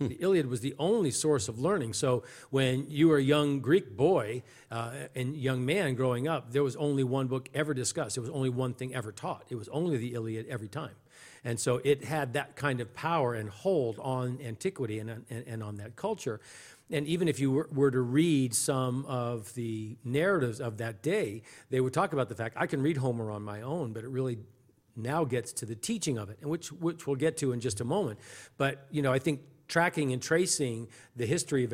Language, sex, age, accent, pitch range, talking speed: English, male, 50-69, American, 115-145 Hz, 225 wpm